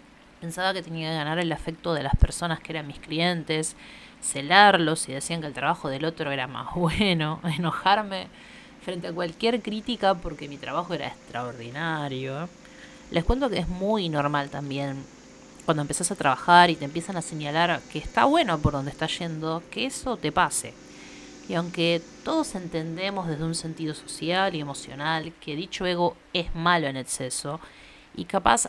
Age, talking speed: 30-49, 170 wpm